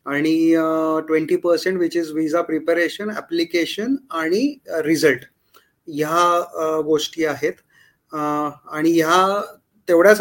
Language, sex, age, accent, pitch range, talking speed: Marathi, male, 20-39, native, 160-190 Hz, 95 wpm